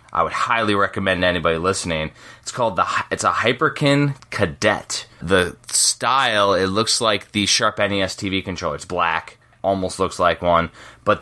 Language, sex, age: English, male, 20-39